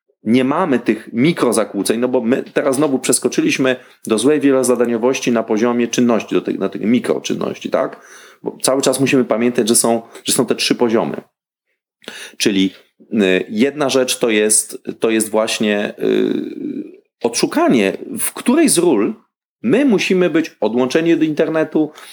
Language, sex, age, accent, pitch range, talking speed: Polish, male, 40-59, native, 115-160 Hz, 145 wpm